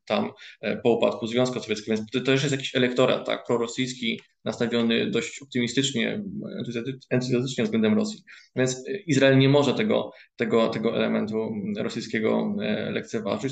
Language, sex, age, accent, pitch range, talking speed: Polish, male, 20-39, native, 115-135 Hz, 130 wpm